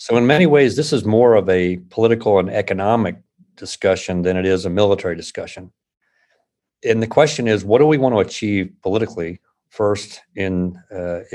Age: 50-69